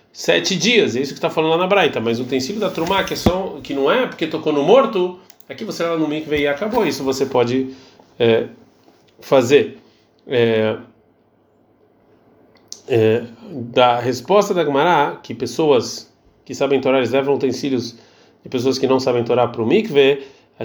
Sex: male